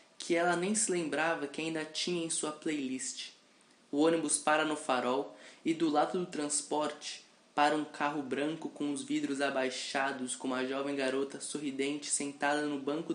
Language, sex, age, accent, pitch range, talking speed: Portuguese, male, 20-39, Brazilian, 135-160 Hz, 170 wpm